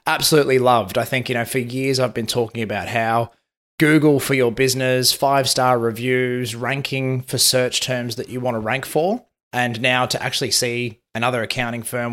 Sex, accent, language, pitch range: male, Australian, English, 120-135 Hz